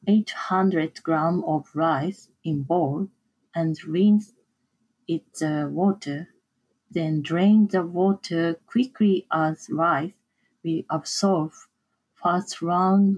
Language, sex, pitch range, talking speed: English, female, 160-210 Hz, 100 wpm